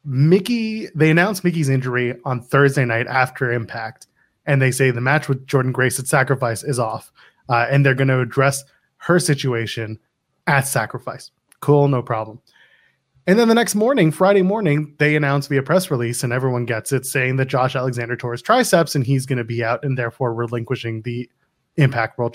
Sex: male